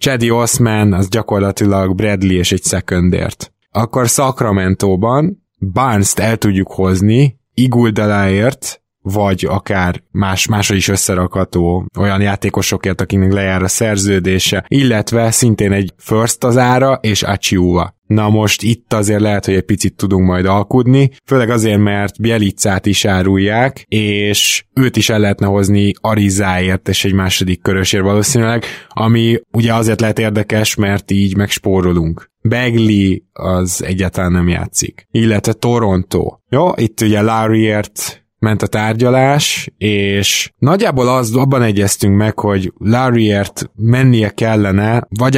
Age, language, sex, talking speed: 20-39, Hungarian, male, 130 wpm